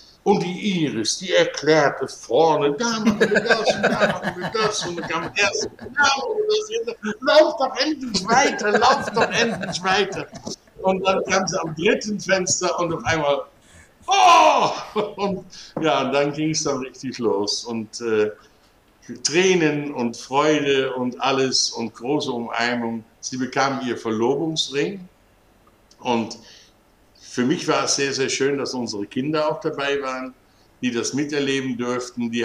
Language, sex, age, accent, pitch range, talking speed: German, male, 60-79, German, 115-175 Hz, 155 wpm